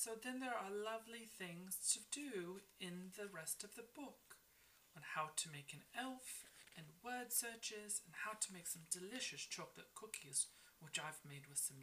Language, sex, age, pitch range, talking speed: English, female, 30-49, 150-220 Hz, 185 wpm